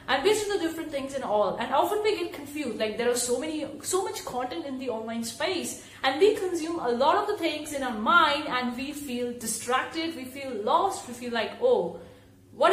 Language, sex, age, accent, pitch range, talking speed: English, female, 30-49, Indian, 240-325 Hz, 225 wpm